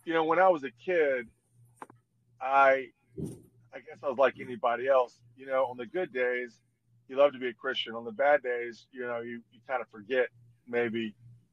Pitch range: 120-140 Hz